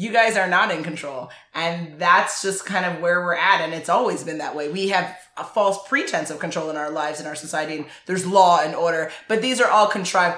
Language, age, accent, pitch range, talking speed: English, 20-39, American, 155-190 Hz, 250 wpm